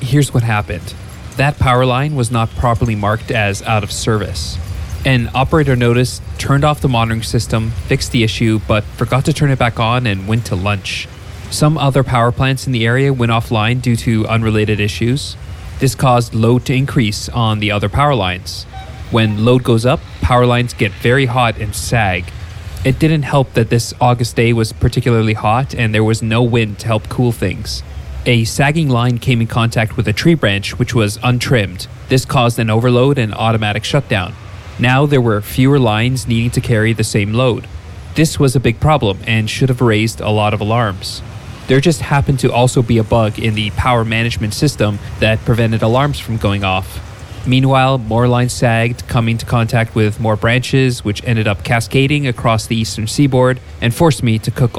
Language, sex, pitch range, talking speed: English, male, 105-125 Hz, 190 wpm